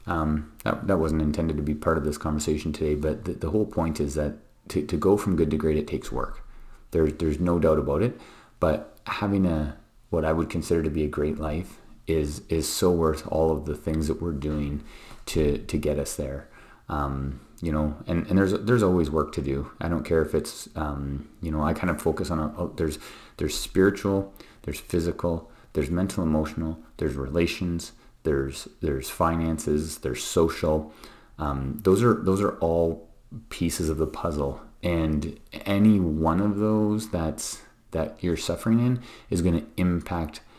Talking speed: 190 wpm